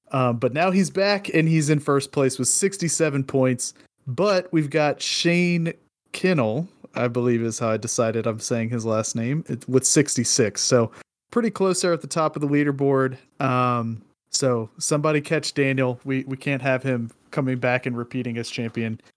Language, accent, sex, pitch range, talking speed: English, American, male, 125-160 Hz, 180 wpm